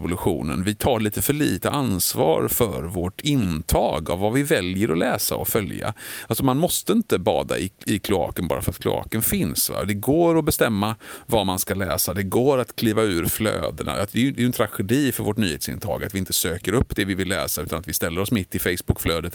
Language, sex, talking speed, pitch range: Swedish, male, 215 wpm, 95-115 Hz